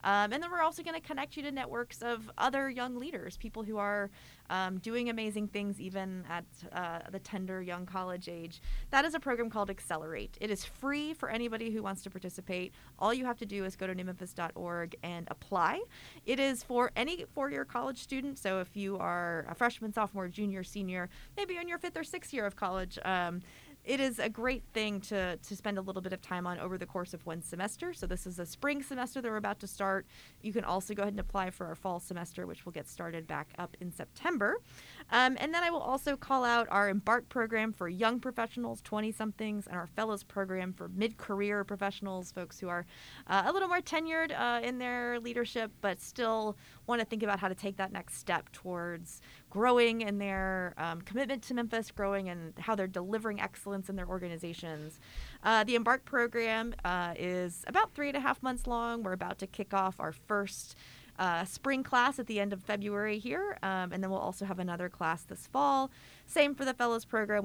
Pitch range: 180-240 Hz